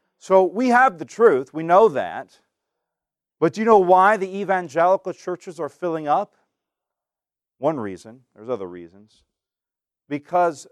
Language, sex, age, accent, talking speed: English, male, 40-59, American, 140 wpm